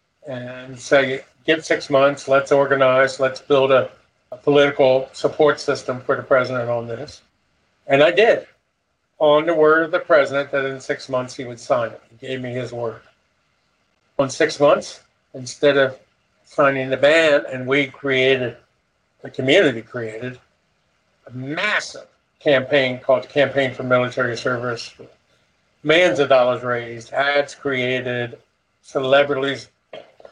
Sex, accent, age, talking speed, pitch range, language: male, American, 50-69, 140 wpm, 125-145 Hz, English